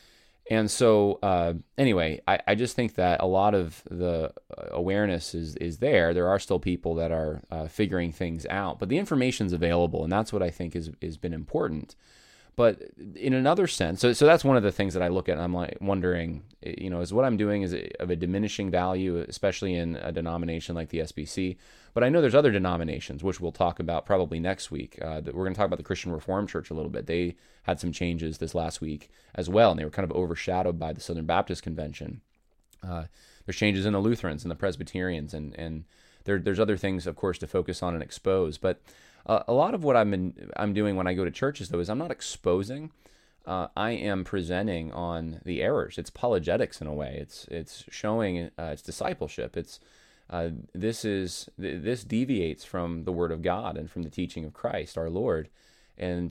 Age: 20-39